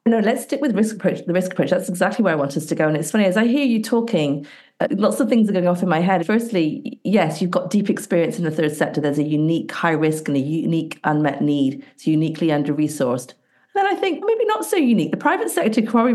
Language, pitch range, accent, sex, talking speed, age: English, 150-210 Hz, British, female, 255 wpm, 40-59